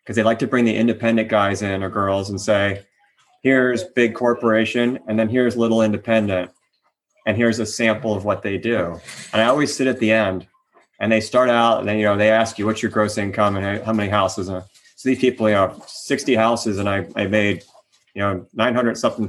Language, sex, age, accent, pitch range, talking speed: English, male, 30-49, American, 100-115 Hz, 220 wpm